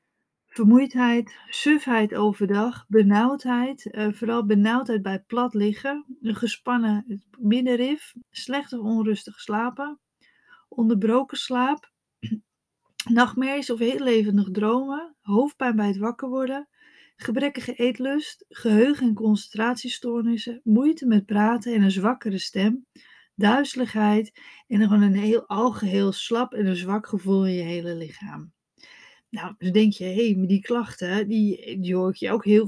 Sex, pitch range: female, 205-240 Hz